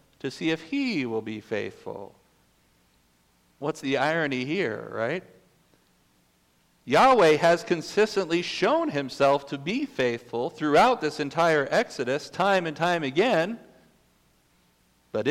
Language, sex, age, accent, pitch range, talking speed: English, male, 50-69, American, 125-175 Hz, 115 wpm